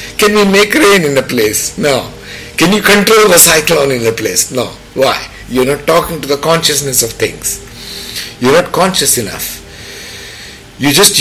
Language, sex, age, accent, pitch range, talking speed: English, male, 50-69, Indian, 115-165 Hz, 185 wpm